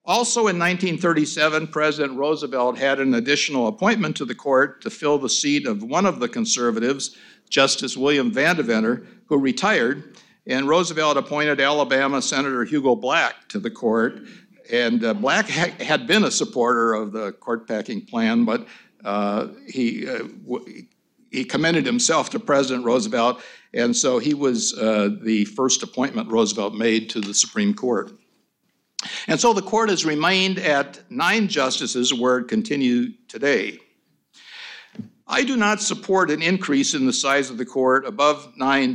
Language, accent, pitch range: English, American, 130-210 Hz